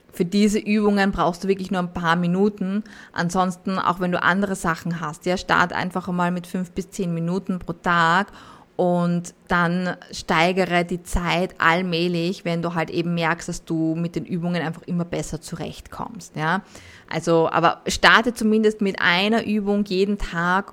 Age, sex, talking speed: 20-39, female, 170 wpm